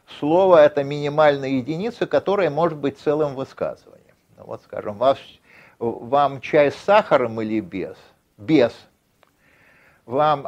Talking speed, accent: 125 wpm, native